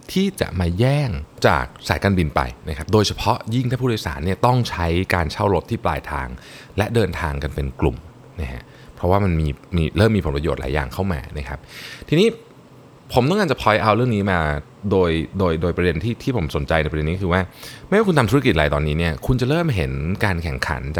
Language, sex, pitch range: Thai, male, 75-105 Hz